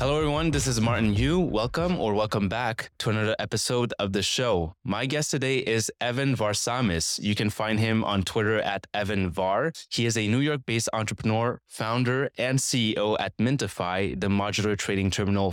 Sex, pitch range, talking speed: male, 100-115 Hz, 175 wpm